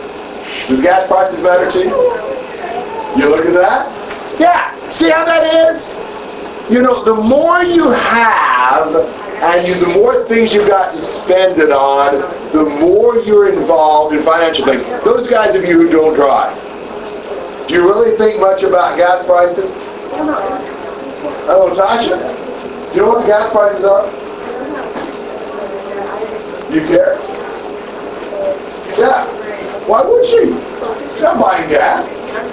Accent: American